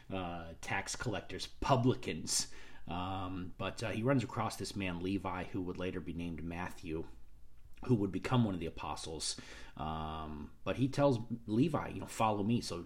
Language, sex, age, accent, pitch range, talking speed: English, male, 40-59, American, 90-110 Hz, 170 wpm